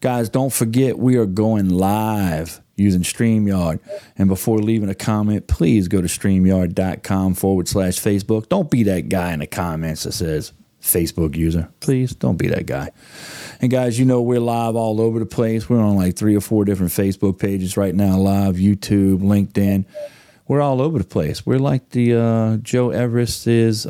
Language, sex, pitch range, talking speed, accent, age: English, male, 95-120 Hz, 180 wpm, American, 40-59